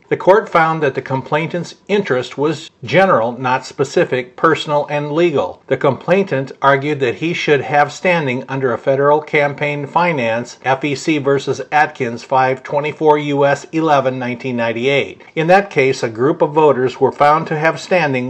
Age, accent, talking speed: 50-69, American, 150 wpm